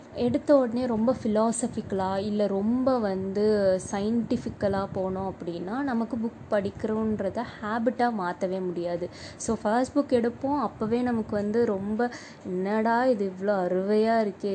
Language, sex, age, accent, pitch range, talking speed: English, female, 20-39, Indian, 190-250 Hz, 85 wpm